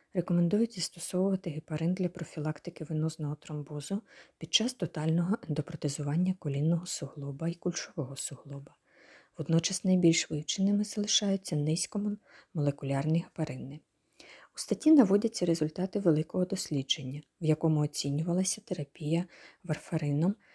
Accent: native